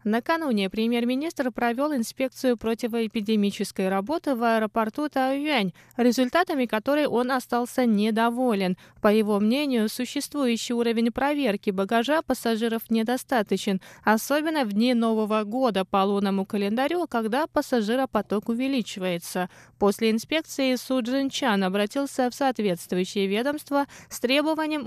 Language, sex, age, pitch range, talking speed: Russian, female, 20-39, 210-270 Hz, 105 wpm